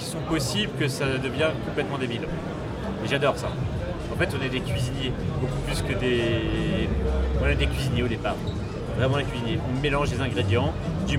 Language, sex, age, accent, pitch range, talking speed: French, male, 40-59, French, 120-145 Hz, 180 wpm